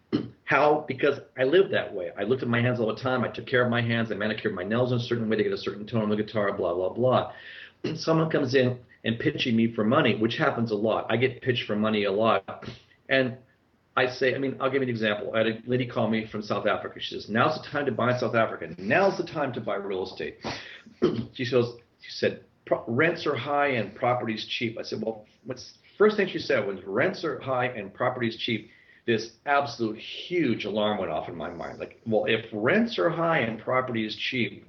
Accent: American